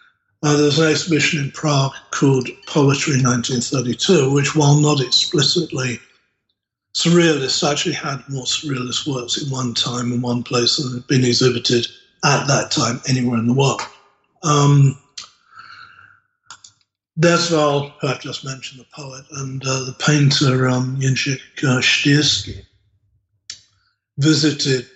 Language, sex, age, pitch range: English, male, 60-79, 125-150 Hz